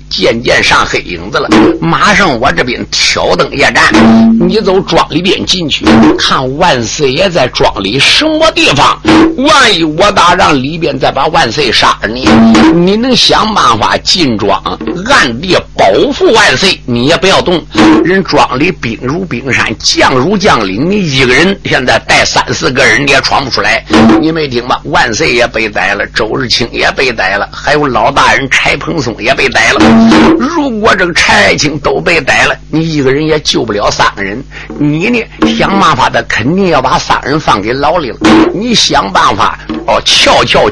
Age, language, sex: 50-69, Chinese, male